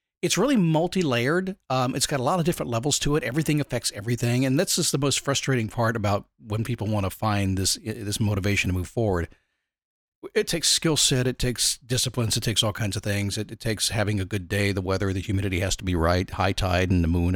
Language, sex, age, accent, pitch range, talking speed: English, male, 40-59, American, 100-150 Hz, 235 wpm